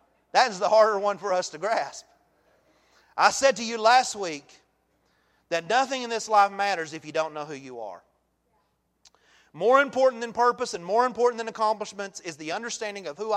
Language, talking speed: English, 190 wpm